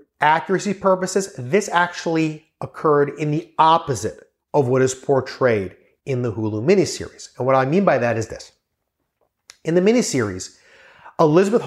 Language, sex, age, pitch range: English, male, 30-49, 130-170 Hz